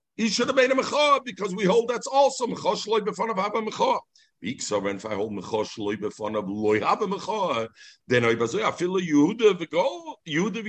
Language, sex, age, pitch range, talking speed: English, male, 50-69, 145-225 Hz, 145 wpm